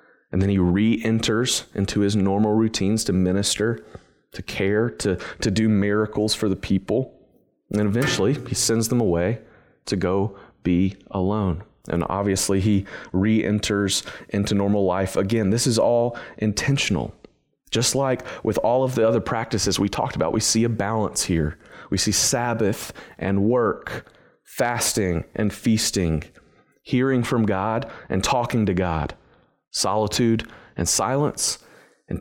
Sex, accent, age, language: male, American, 30-49, English